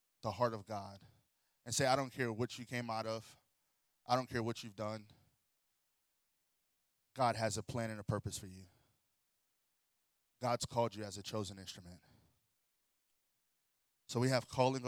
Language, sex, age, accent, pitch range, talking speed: English, male, 20-39, American, 110-130 Hz, 160 wpm